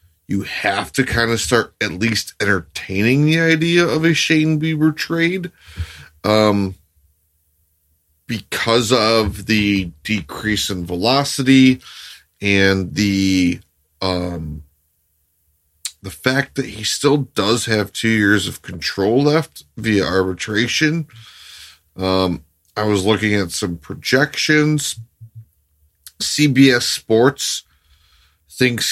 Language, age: English, 30-49